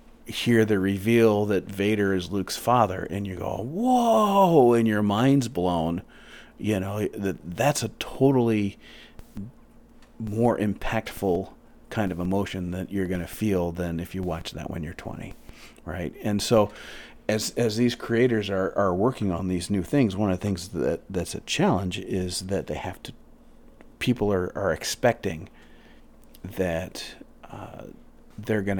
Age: 40-59